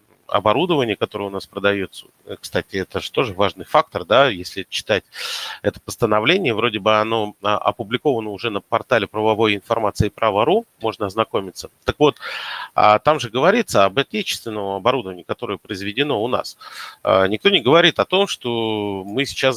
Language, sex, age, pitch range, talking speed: Russian, male, 30-49, 100-120 Hz, 150 wpm